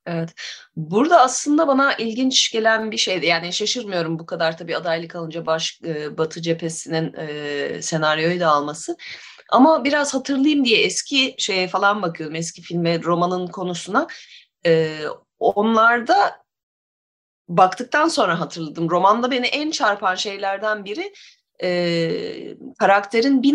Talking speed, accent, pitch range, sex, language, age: 120 wpm, native, 170-250 Hz, female, Turkish, 30-49